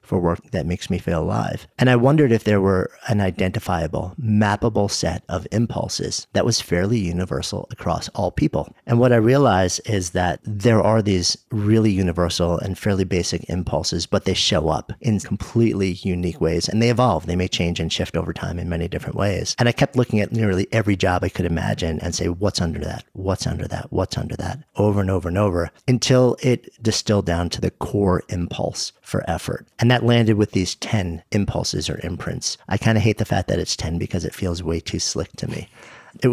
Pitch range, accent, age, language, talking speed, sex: 90-115 Hz, American, 40-59, English, 210 wpm, male